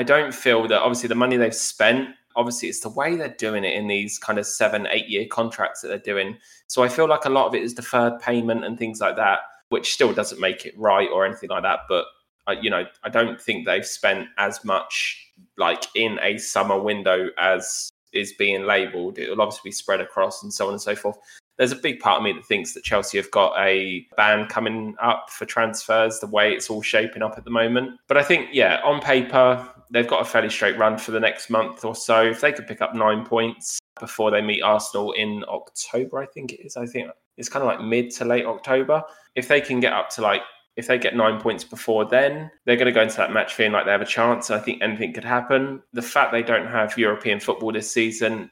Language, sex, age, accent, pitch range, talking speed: English, male, 20-39, British, 110-125 Hz, 245 wpm